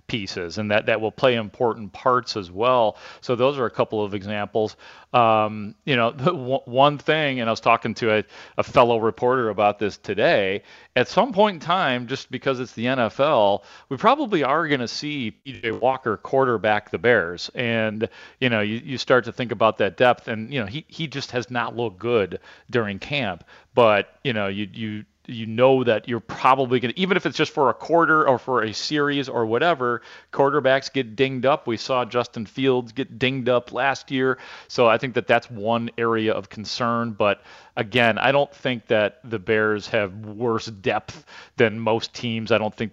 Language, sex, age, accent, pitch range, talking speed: English, male, 40-59, American, 110-130 Hz, 200 wpm